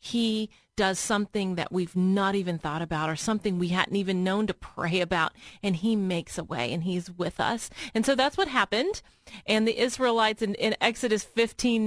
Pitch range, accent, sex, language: 190-255 Hz, American, female, English